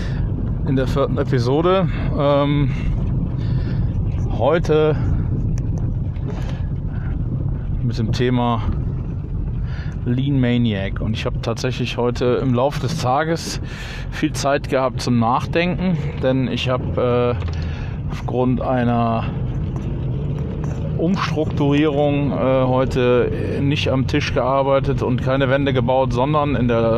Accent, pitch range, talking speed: German, 120-140 Hz, 95 wpm